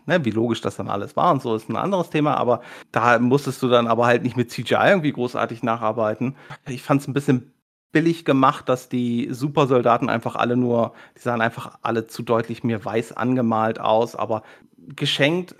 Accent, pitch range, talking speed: German, 120-145 Hz, 190 wpm